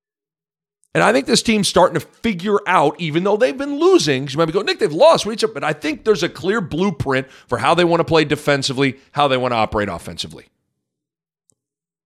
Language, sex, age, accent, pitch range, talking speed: English, male, 40-59, American, 125-175 Hz, 205 wpm